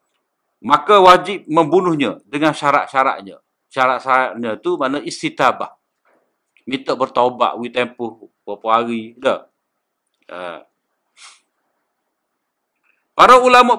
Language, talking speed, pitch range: Malay, 80 wpm, 125-180 Hz